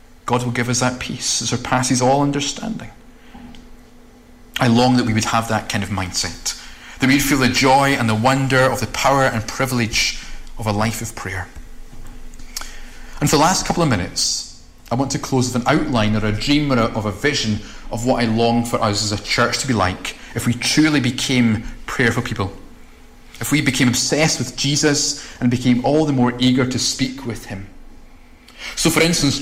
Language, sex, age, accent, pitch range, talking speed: English, male, 30-49, British, 120-145 Hz, 195 wpm